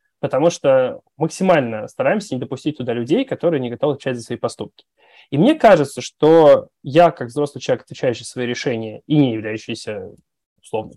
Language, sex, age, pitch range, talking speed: Russian, male, 20-39, 125-180 Hz, 165 wpm